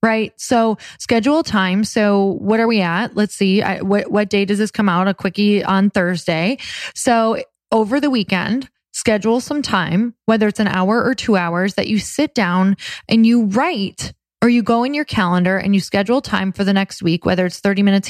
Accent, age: American, 20-39